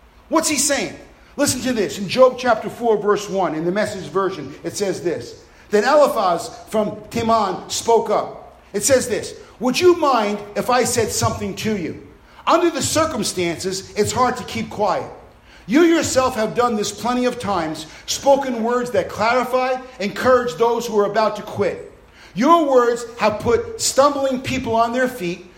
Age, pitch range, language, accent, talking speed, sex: 50-69, 220-280 Hz, English, American, 170 wpm, male